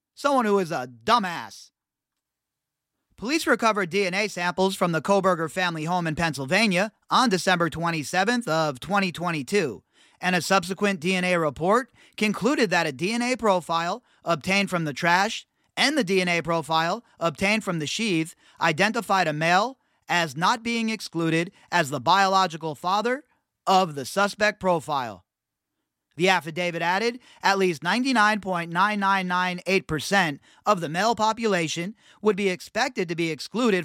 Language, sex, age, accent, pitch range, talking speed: English, male, 30-49, American, 170-205 Hz, 130 wpm